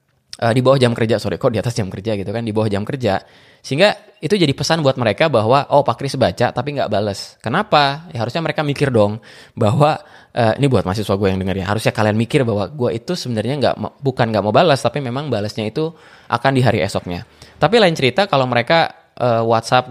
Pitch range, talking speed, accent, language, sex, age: 105-135 Hz, 215 wpm, native, Indonesian, male, 20-39